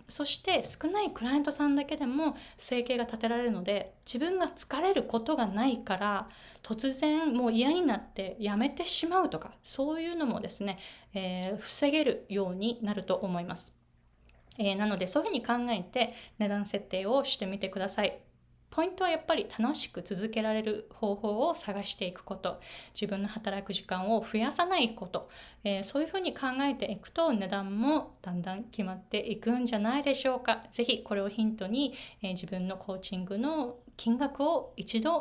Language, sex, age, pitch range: Japanese, female, 20-39, 200-275 Hz